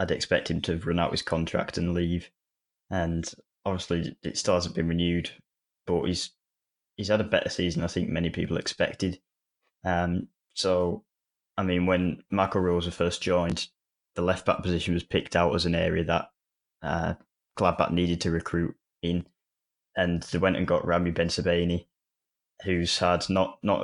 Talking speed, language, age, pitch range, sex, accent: 170 wpm, English, 10-29, 85-90 Hz, male, British